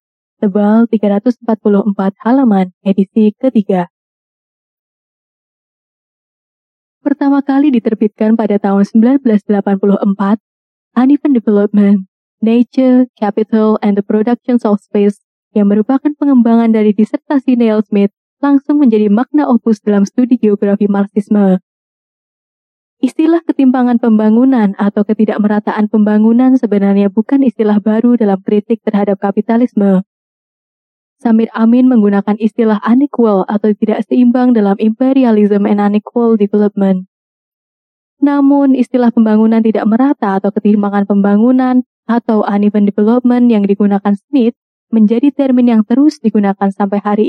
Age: 20-39